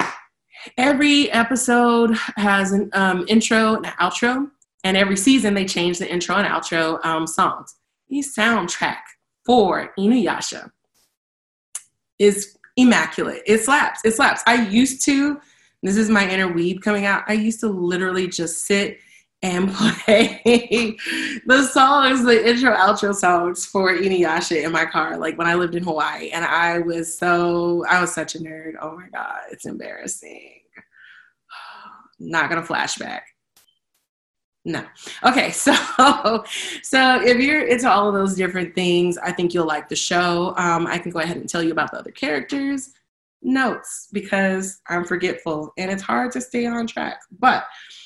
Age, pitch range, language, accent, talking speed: 20-39, 175-240 Hz, English, American, 155 wpm